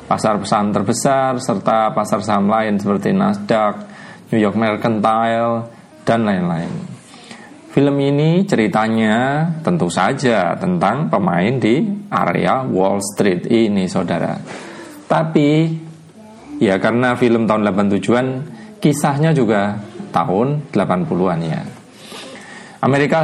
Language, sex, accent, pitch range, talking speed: Indonesian, male, native, 110-150 Hz, 100 wpm